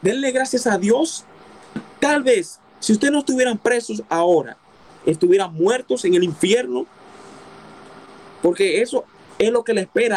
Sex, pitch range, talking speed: male, 155-220 Hz, 140 wpm